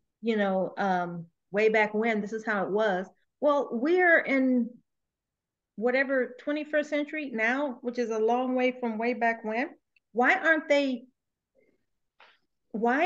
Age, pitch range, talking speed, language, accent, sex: 40-59, 200-245 Hz, 145 wpm, English, American, female